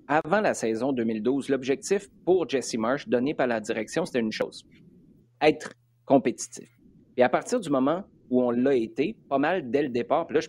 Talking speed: 195 wpm